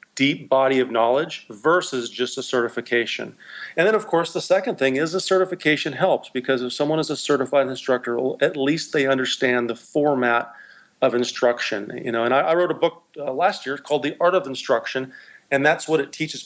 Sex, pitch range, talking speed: male, 125-155 Hz, 200 wpm